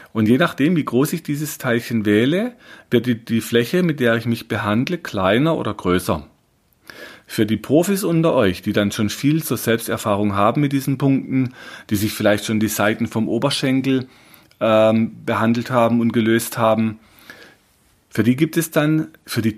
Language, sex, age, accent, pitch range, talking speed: German, male, 40-59, German, 110-145 Hz, 175 wpm